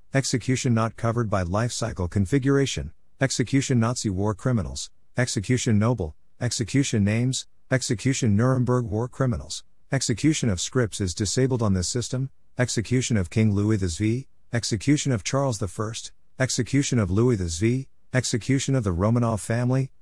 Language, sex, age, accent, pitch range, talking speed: English, male, 50-69, American, 105-130 Hz, 140 wpm